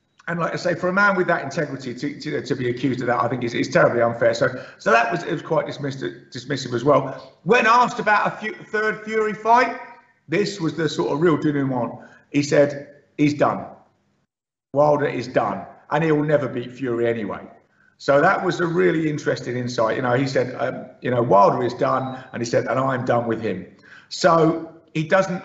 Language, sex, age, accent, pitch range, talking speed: English, male, 50-69, British, 140-175 Hz, 210 wpm